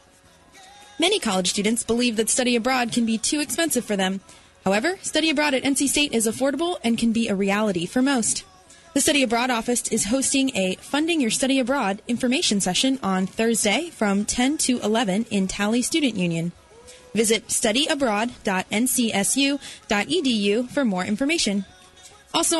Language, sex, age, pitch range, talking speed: English, female, 20-39, 215-275 Hz, 150 wpm